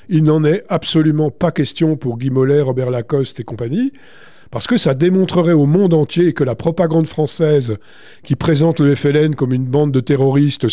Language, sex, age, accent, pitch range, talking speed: French, male, 50-69, French, 125-165 Hz, 185 wpm